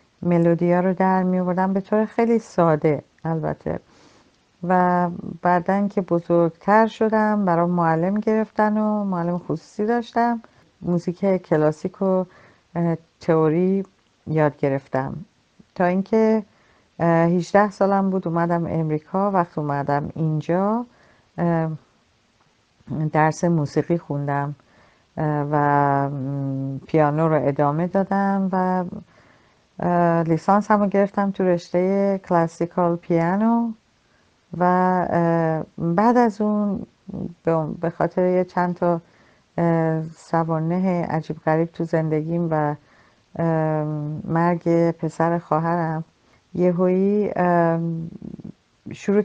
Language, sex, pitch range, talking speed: Persian, female, 160-195 Hz, 85 wpm